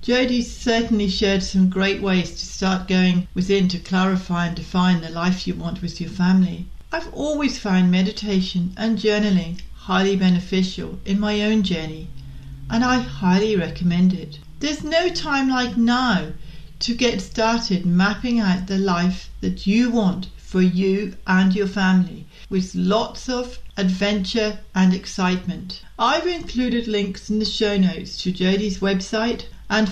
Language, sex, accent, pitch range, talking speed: English, female, British, 180-225 Hz, 150 wpm